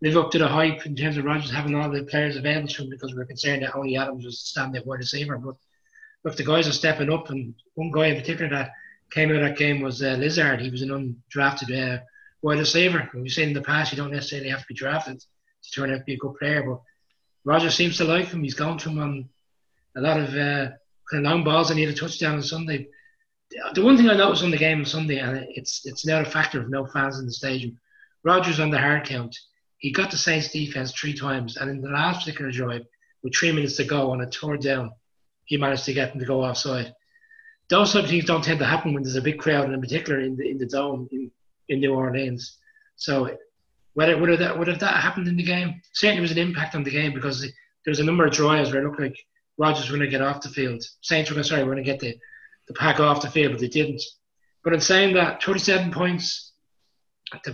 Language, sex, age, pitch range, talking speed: English, male, 20-39, 135-165 Hz, 250 wpm